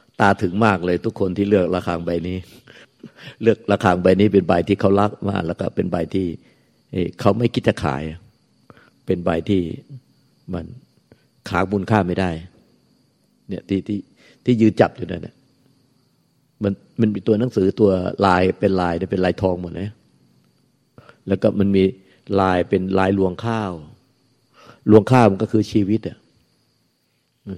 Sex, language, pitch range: male, Thai, 90-105 Hz